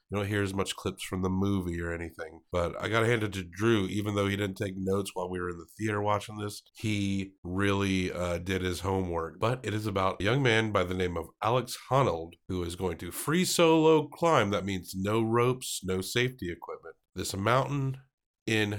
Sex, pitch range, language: male, 90-120 Hz, English